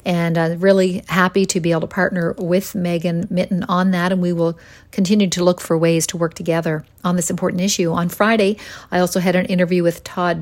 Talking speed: 225 wpm